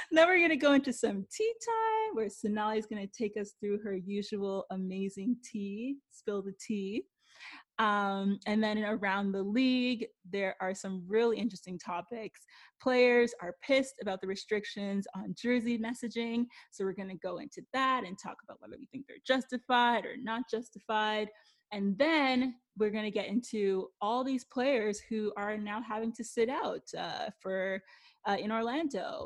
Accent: American